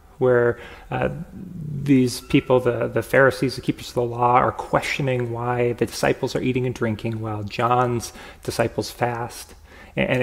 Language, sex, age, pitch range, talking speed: English, male, 30-49, 85-135 Hz, 155 wpm